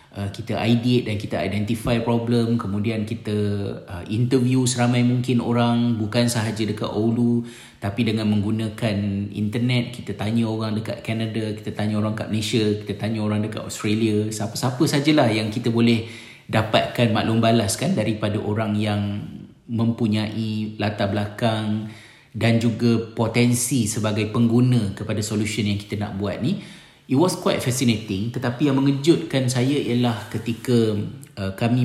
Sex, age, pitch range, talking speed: male, 30-49, 105-120 Hz, 140 wpm